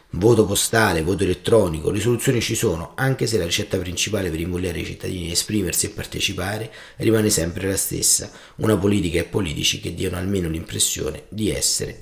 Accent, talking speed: native, 175 wpm